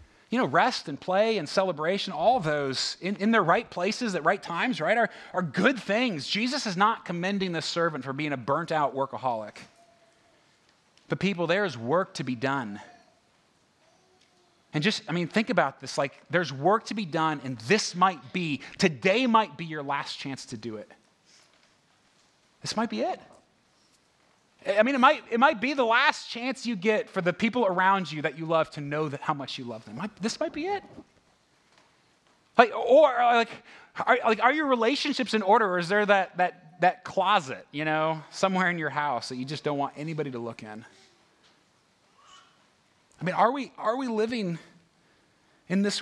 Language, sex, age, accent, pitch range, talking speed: English, male, 30-49, American, 150-220 Hz, 190 wpm